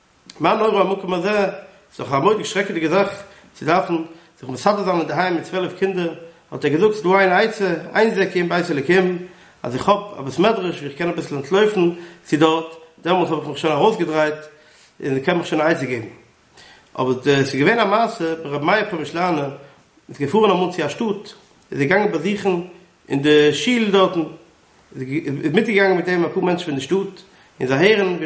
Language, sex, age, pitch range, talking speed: English, male, 50-69, 165-200 Hz, 130 wpm